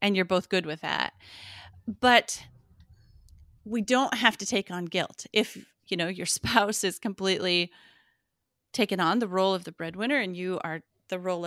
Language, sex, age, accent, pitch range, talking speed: English, female, 30-49, American, 175-240 Hz, 175 wpm